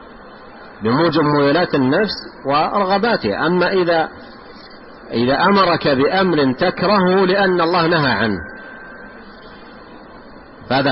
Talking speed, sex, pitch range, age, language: 80 wpm, male, 135-205 Hz, 50-69, Arabic